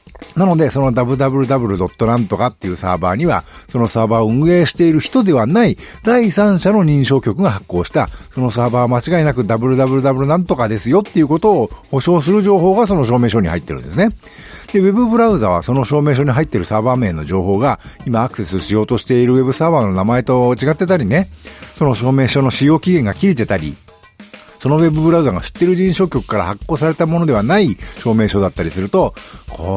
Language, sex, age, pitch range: Japanese, male, 50-69, 110-180 Hz